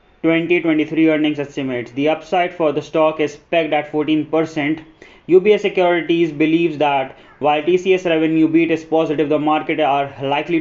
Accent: Indian